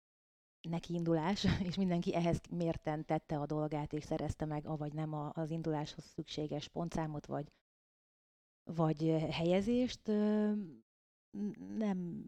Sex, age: female, 30-49